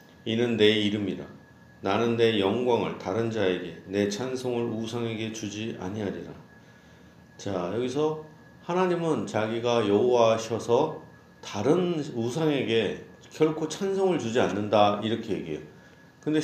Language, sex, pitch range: Korean, male, 105-145 Hz